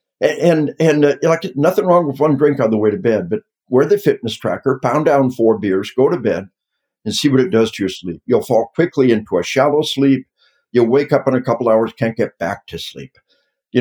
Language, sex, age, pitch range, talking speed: English, male, 60-79, 115-145 Hz, 235 wpm